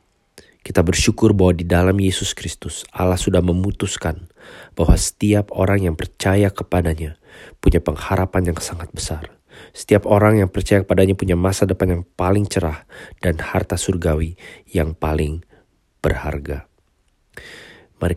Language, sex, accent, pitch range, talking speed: English, male, Indonesian, 85-95 Hz, 130 wpm